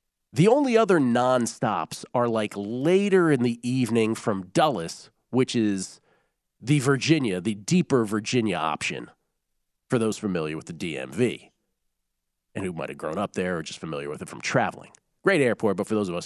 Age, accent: 40-59, American